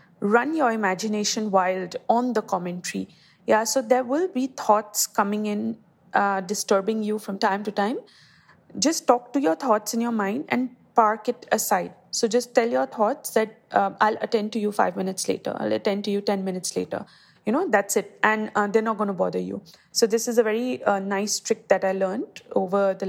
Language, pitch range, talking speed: English, 200-230 Hz, 205 wpm